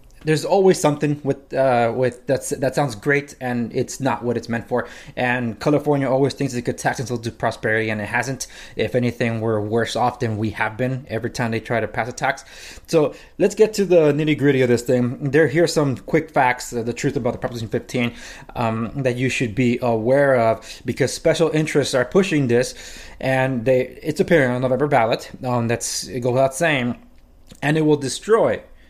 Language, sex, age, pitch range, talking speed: English, male, 20-39, 120-165 Hz, 205 wpm